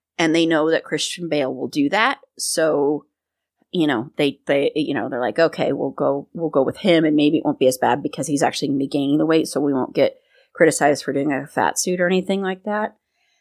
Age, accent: 30-49, American